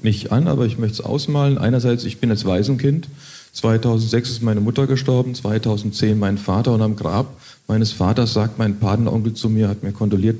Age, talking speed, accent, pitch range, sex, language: 40-59, 190 wpm, German, 105-135 Hz, male, German